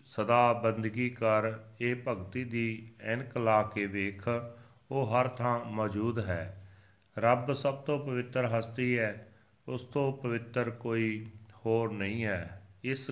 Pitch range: 105-125 Hz